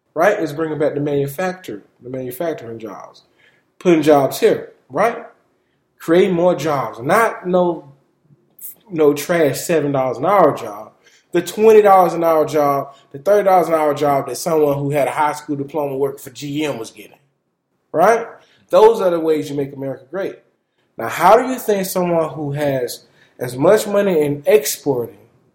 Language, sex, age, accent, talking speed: English, male, 20-39, American, 170 wpm